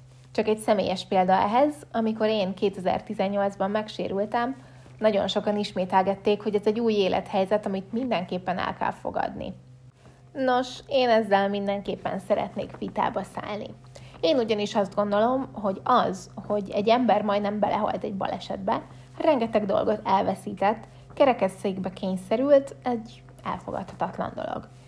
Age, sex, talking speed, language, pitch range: 20-39, female, 120 wpm, Hungarian, 190-220 Hz